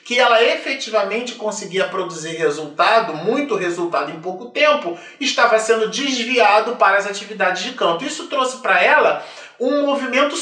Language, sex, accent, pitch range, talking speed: Portuguese, male, Brazilian, 195-255 Hz, 145 wpm